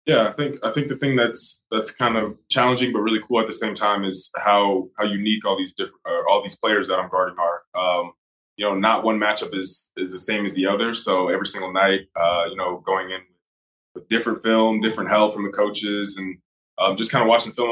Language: English